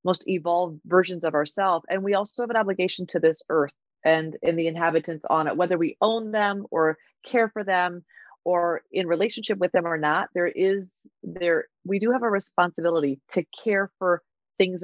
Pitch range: 160-195 Hz